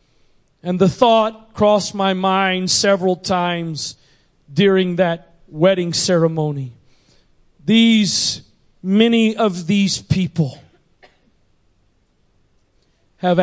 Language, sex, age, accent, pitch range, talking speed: English, male, 40-59, American, 165-210 Hz, 80 wpm